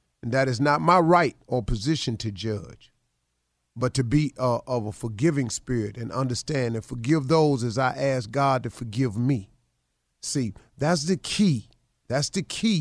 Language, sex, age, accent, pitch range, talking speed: English, male, 40-59, American, 110-160 Hz, 175 wpm